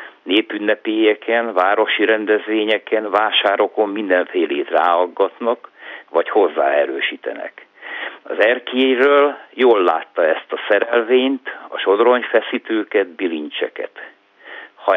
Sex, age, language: male, 60-79, Hungarian